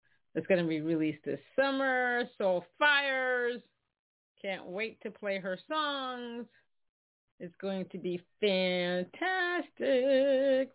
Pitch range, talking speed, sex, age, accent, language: 170-220 Hz, 105 wpm, female, 40-59, American, English